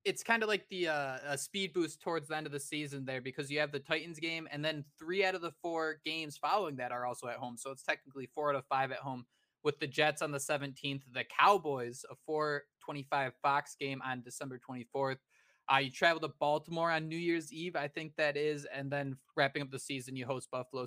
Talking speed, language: 240 wpm, English